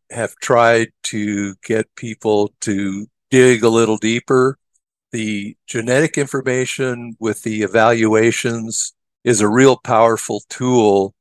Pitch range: 105-120 Hz